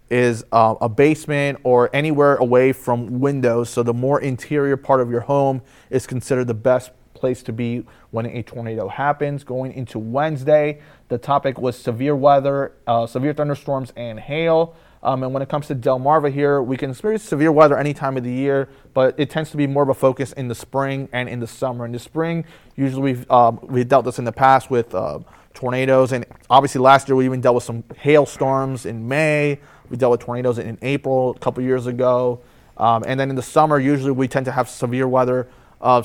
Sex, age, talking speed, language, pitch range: male, 30-49, 215 wpm, English, 120-140 Hz